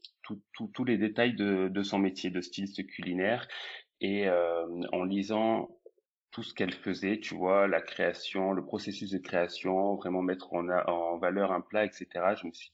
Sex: male